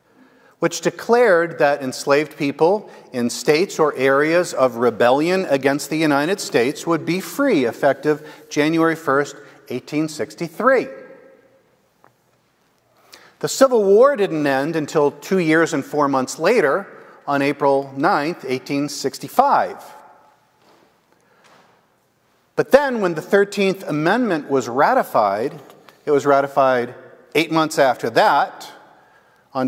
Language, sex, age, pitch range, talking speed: English, male, 50-69, 140-180 Hz, 110 wpm